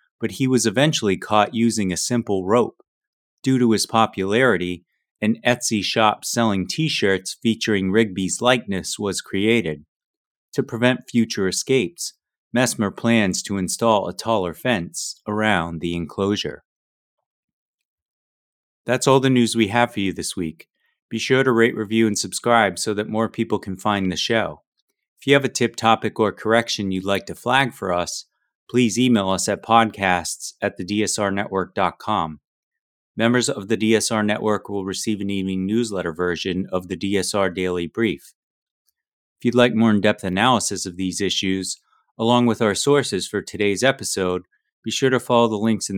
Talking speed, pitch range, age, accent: 160 wpm, 95-115 Hz, 30-49, American